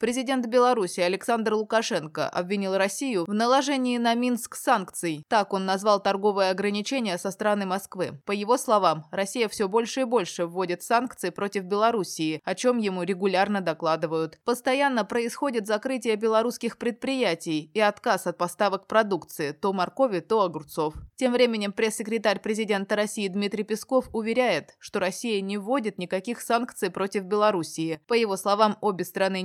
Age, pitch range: 20-39, 180-225 Hz